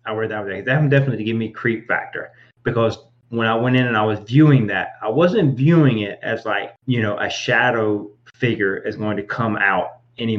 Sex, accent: male, American